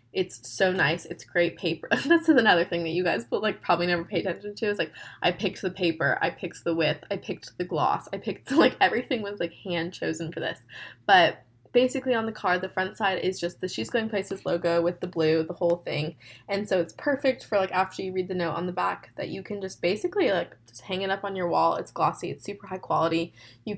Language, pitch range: English, 170-205 Hz